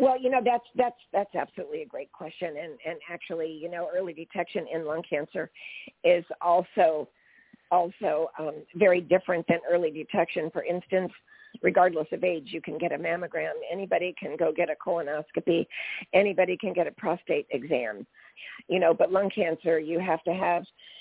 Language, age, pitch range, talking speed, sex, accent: English, 50-69, 170-225 Hz, 170 wpm, female, American